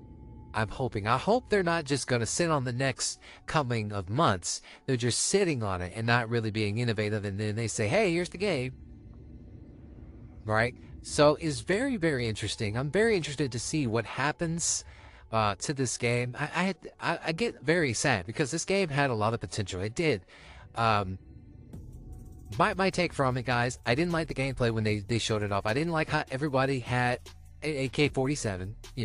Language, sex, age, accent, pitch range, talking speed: English, male, 30-49, American, 105-155 Hz, 195 wpm